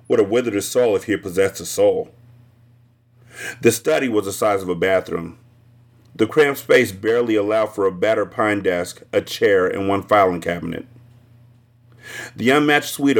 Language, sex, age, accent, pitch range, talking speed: English, male, 40-59, American, 105-130 Hz, 175 wpm